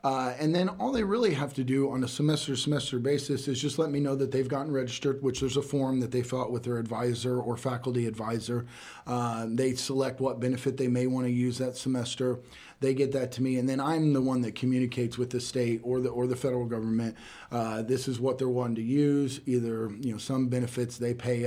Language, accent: English, American